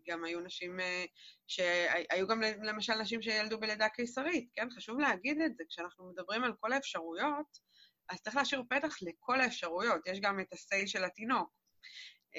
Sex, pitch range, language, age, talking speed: female, 180-240 Hz, Hebrew, 20-39, 155 wpm